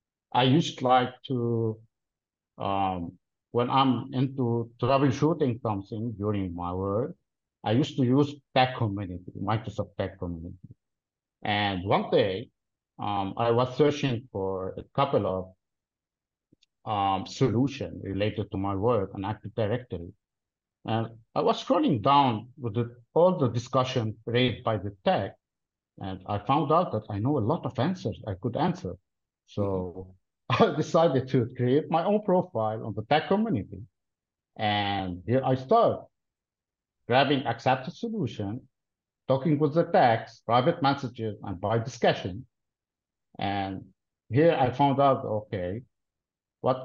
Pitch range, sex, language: 100-130 Hz, male, English